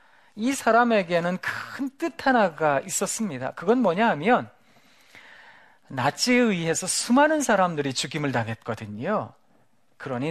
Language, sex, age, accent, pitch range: Korean, male, 40-59, native, 135-220 Hz